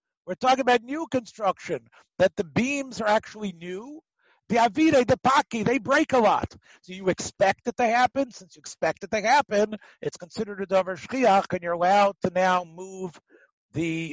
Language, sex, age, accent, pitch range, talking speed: English, male, 50-69, American, 175-235 Hz, 185 wpm